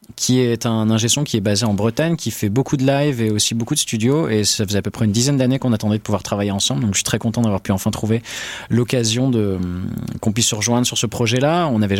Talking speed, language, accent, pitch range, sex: 270 wpm, French, French, 100-125 Hz, male